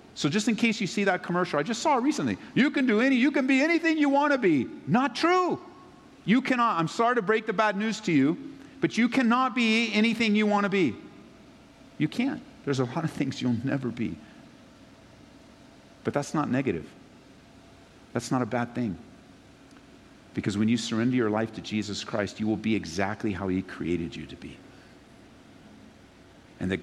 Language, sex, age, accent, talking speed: English, male, 50-69, American, 190 wpm